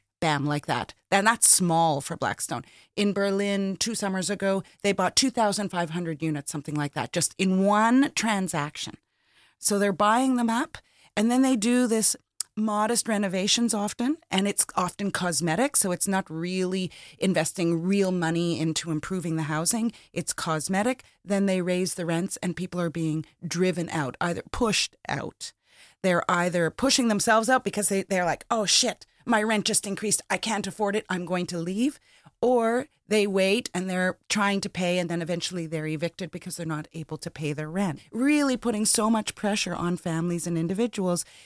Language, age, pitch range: Dutch, 30-49, 175-220 Hz